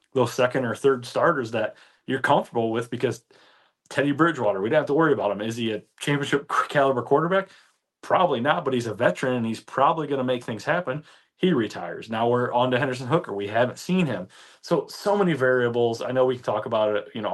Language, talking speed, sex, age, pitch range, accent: English, 220 wpm, male, 30-49, 115-140 Hz, American